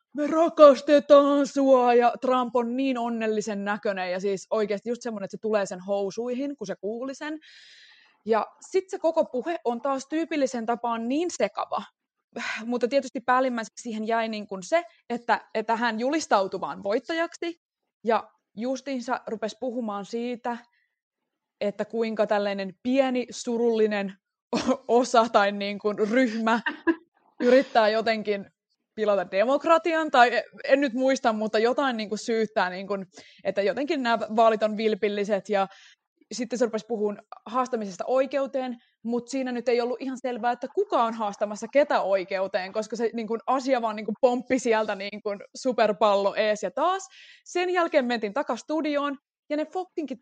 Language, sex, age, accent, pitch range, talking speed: Finnish, female, 20-39, native, 215-275 Hz, 150 wpm